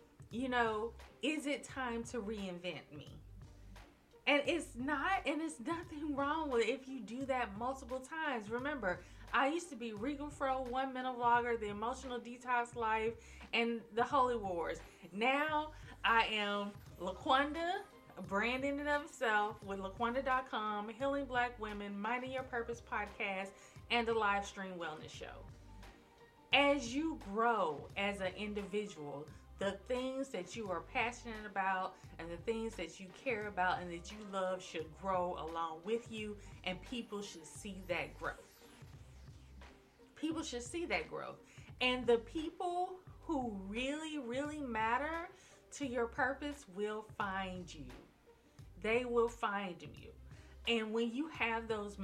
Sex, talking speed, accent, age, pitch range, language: female, 145 wpm, American, 20-39, 195-260 Hz, English